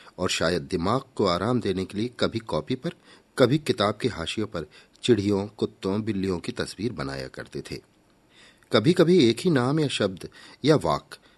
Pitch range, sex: 95-140 Hz, male